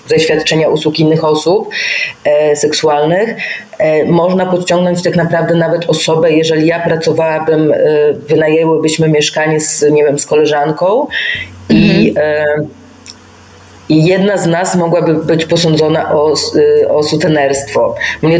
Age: 30-49